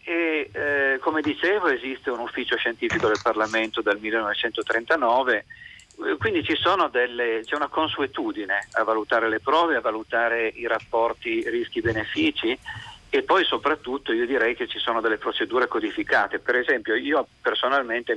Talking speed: 140 wpm